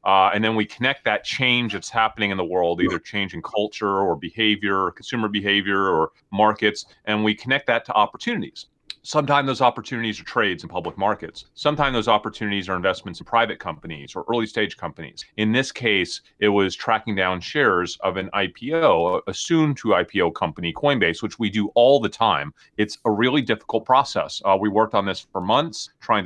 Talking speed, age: 190 wpm, 30-49